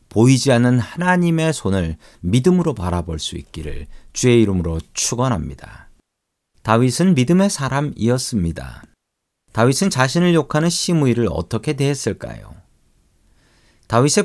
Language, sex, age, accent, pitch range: Korean, male, 40-59, native, 95-145 Hz